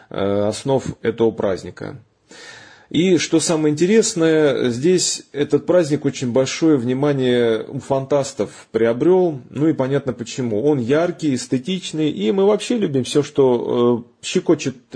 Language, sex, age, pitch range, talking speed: Russian, male, 30-49, 115-150 Hz, 120 wpm